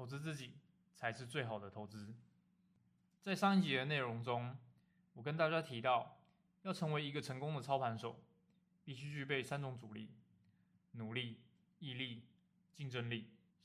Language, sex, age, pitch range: Chinese, male, 20-39, 120-180 Hz